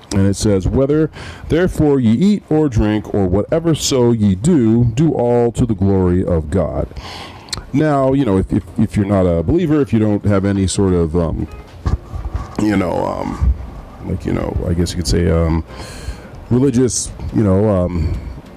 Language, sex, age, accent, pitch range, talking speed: English, male, 40-59, American, 90-110 Hz, 180 wpm